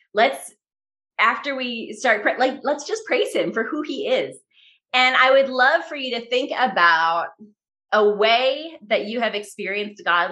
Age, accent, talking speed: 30-49, American, 170 wpm